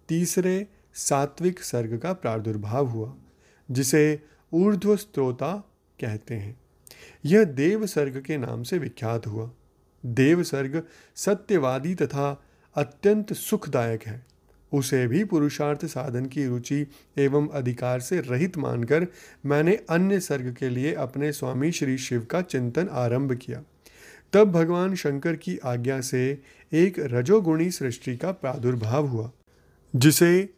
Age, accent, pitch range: 30-49, native, 125-165 Hz